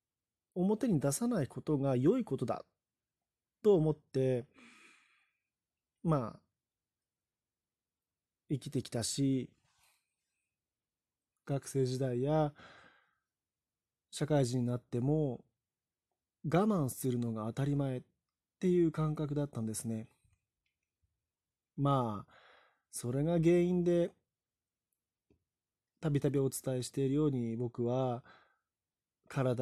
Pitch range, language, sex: 120-155 Hz, Japanese, male